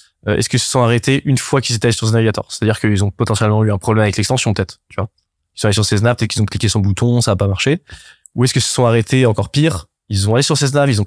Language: French